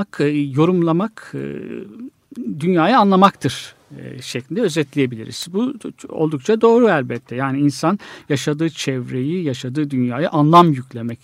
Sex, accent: male, native